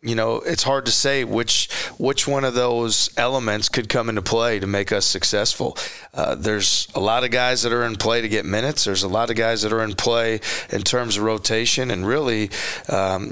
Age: 40-59